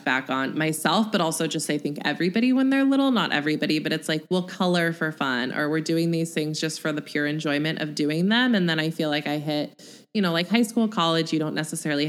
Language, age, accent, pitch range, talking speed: English, 20-39, American, 150-190 Hz, 250 wpm